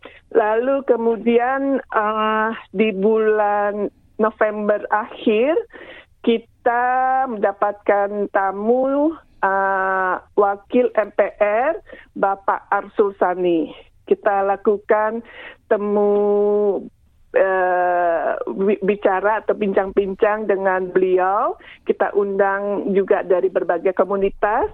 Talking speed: 75 wpm